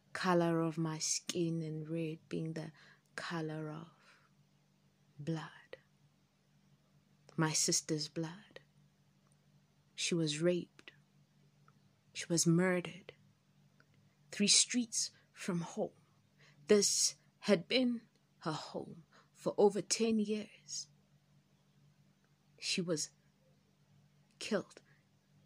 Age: 30-49